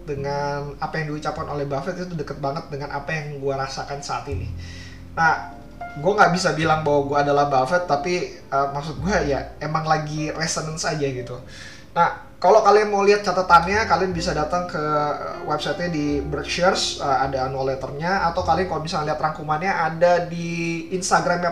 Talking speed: 165 wpm